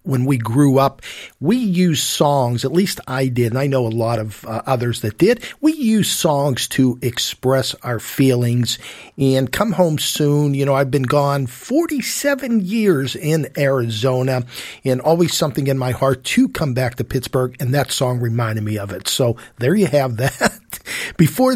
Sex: male